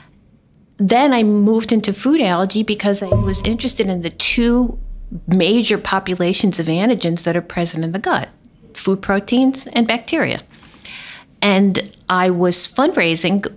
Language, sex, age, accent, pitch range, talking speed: English, female, 50-69, American, 165-205 Hz, 135 wpm